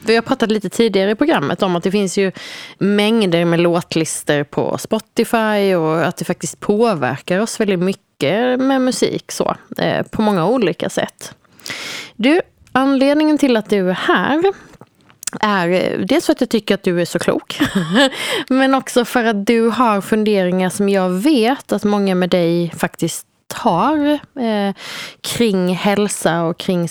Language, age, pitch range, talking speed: Swedish, 30-49, 185-245 Hz, 160 wpm